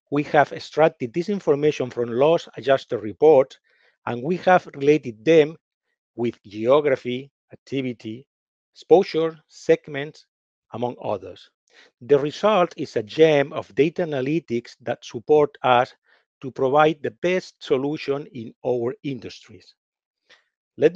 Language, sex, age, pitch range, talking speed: English, male, 50-69, 125-160 Hz, 115 wpm